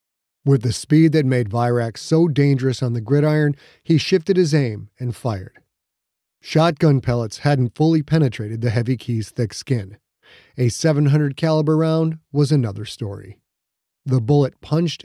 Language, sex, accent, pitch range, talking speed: English, male, American, 115-145 Hz, 150 wpm